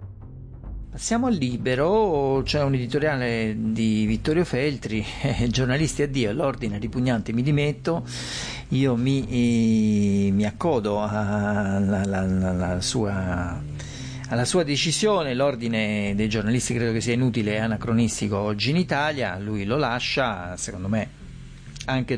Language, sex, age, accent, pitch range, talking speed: Italian, male, 50-69, native, 105-135 Hz, 115 wpm